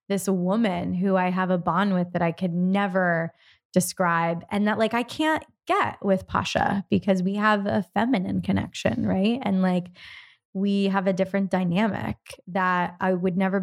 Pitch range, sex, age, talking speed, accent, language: 175-200 Hz, female, 20-39, 170 wpm, American, English